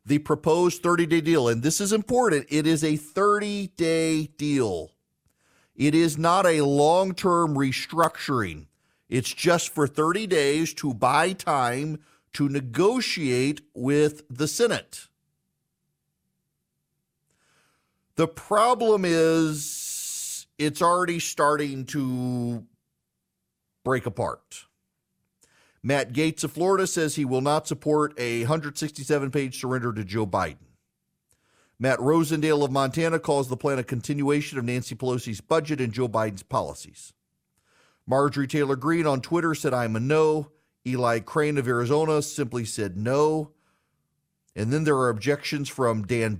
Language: English